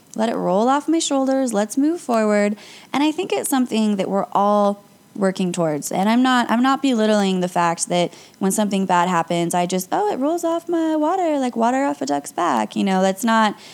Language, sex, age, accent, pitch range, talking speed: English, female, 20-39, American, 185-255 Hz, 220 wpm